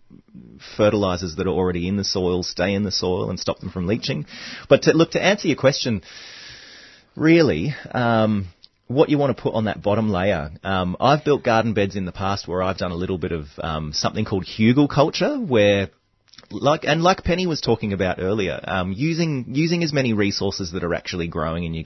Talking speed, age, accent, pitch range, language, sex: 205 wpm, 30-49, Australian, 85-110 Hz, English, male